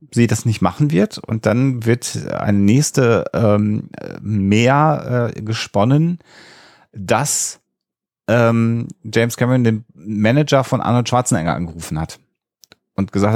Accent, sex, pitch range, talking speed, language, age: German, male, 100-120 Hz, 120 wpm, German, 30-49